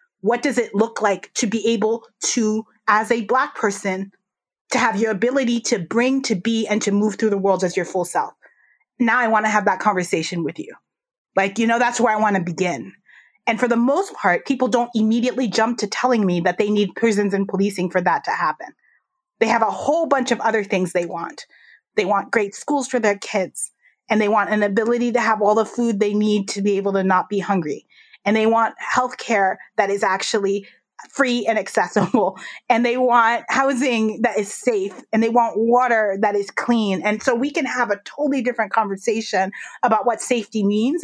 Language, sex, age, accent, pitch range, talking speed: English, female, 30-49, American, 205-245 Hz, 210 wpm